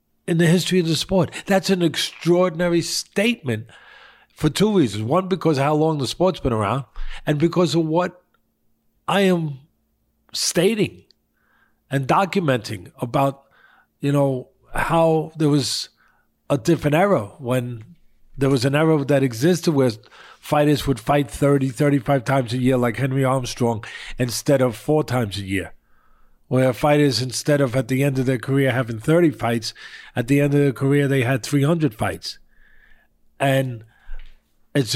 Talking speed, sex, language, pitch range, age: 155 wpm, male, English, 125-155 Hz, 40-59